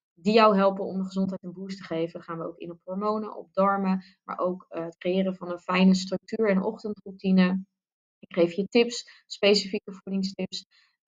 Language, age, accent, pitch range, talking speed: Dutch, 20-39, Dutch, 175-200 Hz, 190 wpm